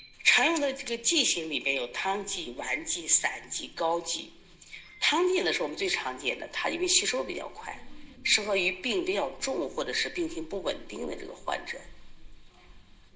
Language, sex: Chinese, female